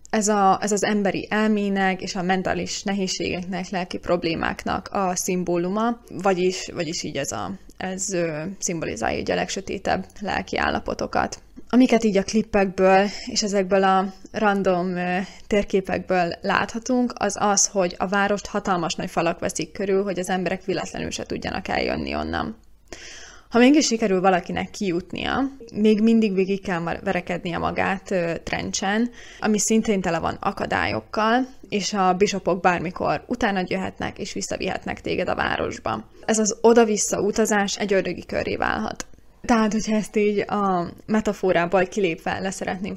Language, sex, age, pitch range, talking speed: Hungarian, female, 20-39, 180-210 Hz, 135 wpm